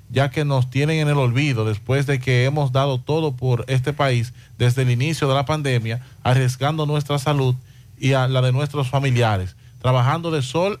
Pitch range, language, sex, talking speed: 125-155 Hz, Spanish, male, 190 wpm